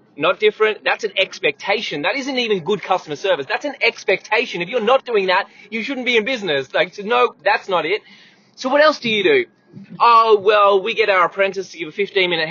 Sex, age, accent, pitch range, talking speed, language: male, 20-39, Australian, 180-250 Hz, 225 wpm, English